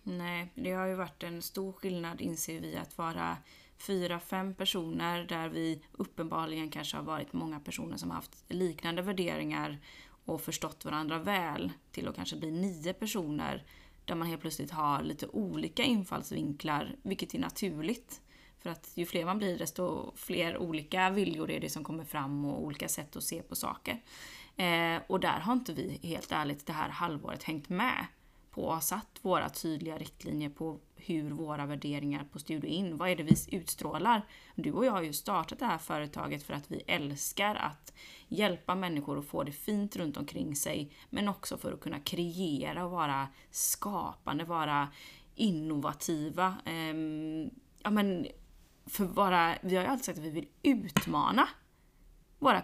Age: 20-39